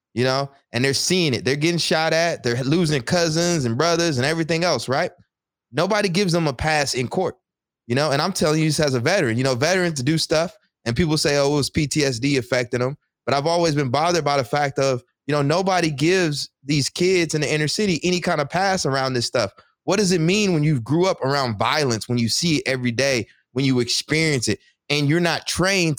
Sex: male